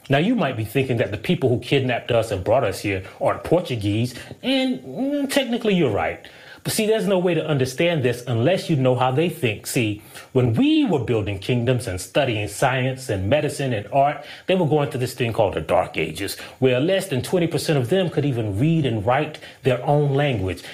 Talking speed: 215 wpm